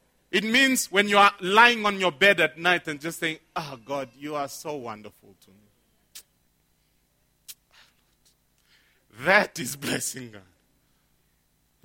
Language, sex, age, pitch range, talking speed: English, male, 40-59, 155-245 Hz, 130 wpm